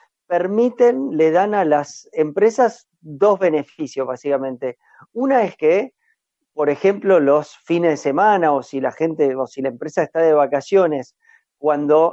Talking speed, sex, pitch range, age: 150 wpm, male, 140-200 Hz, 40-59